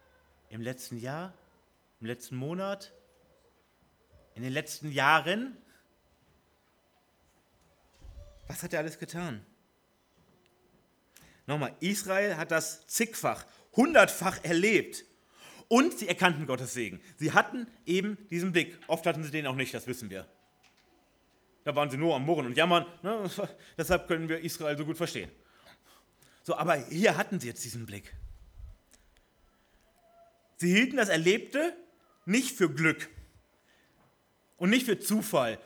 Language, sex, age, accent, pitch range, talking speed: German, male, 30-49, German, 135-195 Hz, 125 wpm